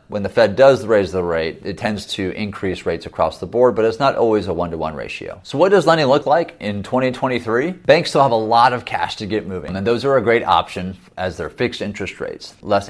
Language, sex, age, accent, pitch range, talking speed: English, male, 30-49, American, 85-110 Hz, 240 wpm